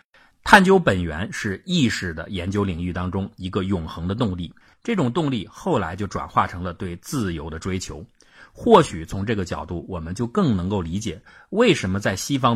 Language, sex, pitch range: Chinese, male, 90-120 Hz